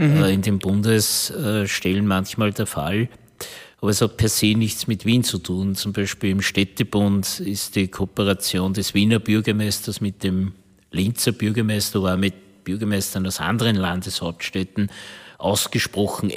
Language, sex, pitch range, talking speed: German, male, 100-115 Hz, 135 wpm